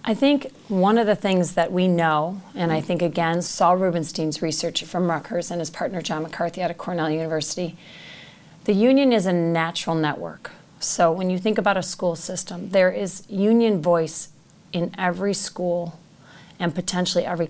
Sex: female